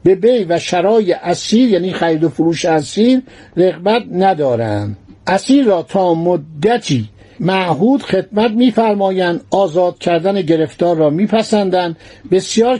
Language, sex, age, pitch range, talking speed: Persian, male, 60-79, 165-220 Hz, 115 wpm